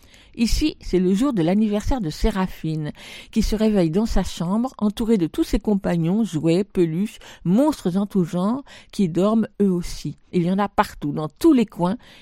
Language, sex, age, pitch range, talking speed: French, female, 50-69, 175-225 Hz, 185 wpm